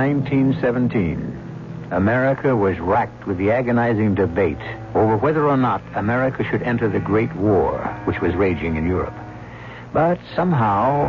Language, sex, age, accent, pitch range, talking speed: English, male, 70-89, American, 80-125 Hz, 135 wpm